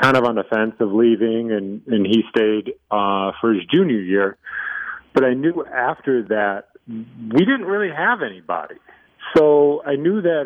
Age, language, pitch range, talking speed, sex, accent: 40-59, English, 105-140 Hz, 170 wpm, male, American